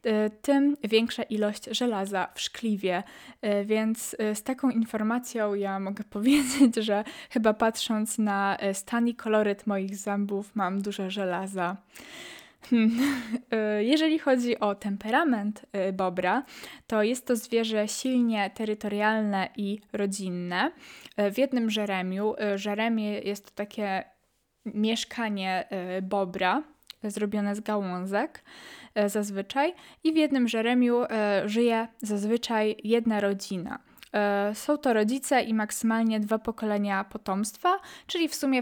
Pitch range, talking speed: 205-240 Hz, 115 wpm